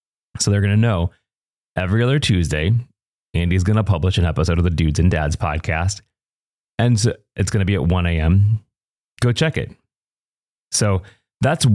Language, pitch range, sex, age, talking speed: English, 95-115 Hz, male, 30-49, 160 wpm